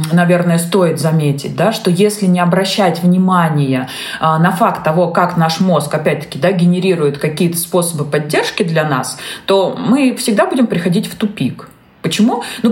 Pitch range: 165-220 Hz